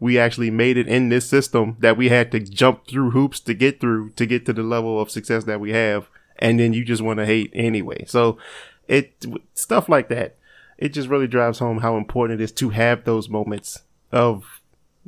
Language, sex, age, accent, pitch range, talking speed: English, male, 20-39, American, 110-130 Hz, 215 wpm